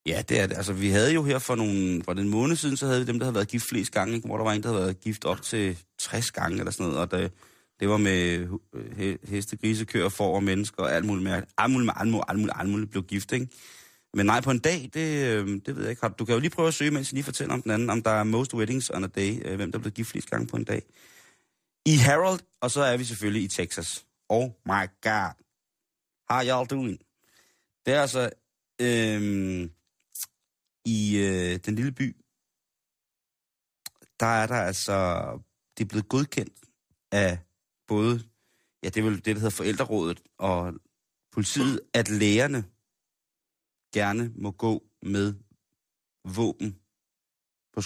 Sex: male